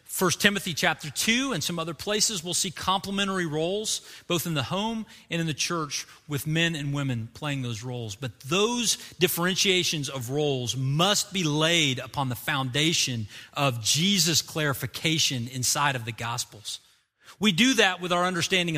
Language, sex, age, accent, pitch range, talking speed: English, male, 40-59, American, 125-175 Hz, 165 wpm